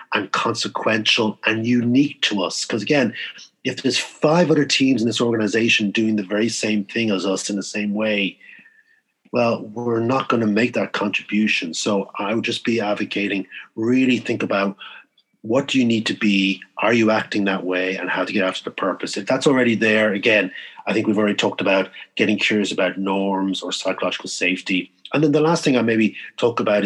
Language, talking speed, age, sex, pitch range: English, 200 wpm, 40-59, male, 100-120 Hz